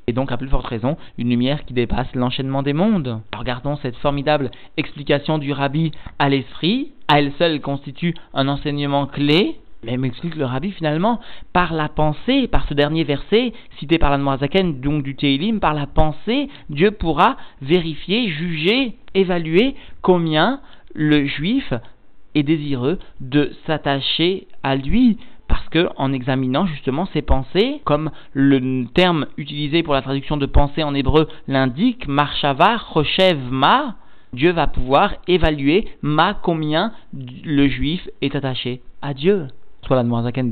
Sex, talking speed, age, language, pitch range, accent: male, 150 wpm, 40-59, French, 130-165 Hz, French